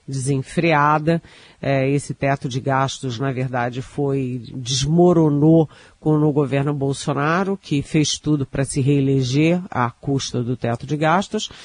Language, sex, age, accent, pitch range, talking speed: Portuguese, female, 40-59, Brazilian, 140-170 Hz, 130 wpm